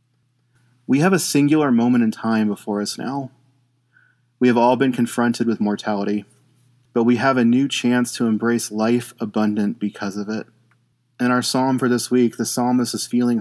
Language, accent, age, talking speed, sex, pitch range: English, American, 30-49, 180 wpm, male, 110-125 Hz